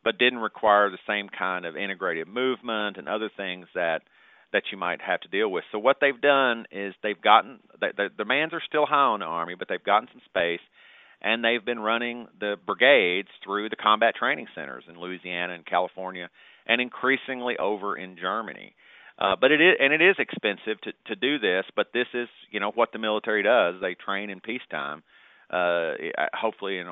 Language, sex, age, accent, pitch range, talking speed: English, male, 40-59, American, 95-125 Hz, 200 wpm